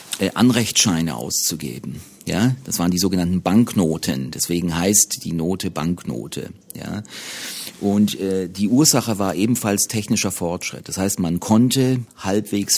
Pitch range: 90-120 Hz